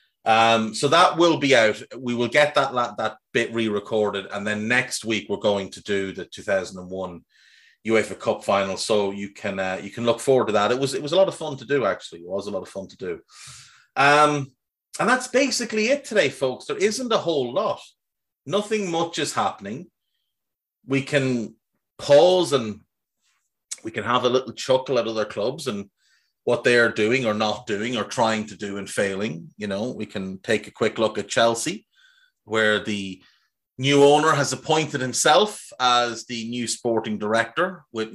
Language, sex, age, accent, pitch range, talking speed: English, male, 30-49, Irish, 105-145 Hz, 195 wpm